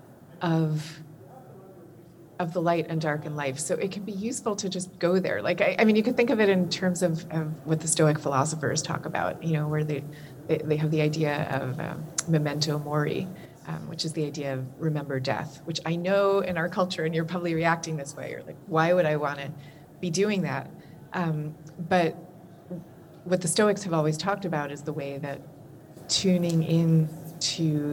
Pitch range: 150-175 Hz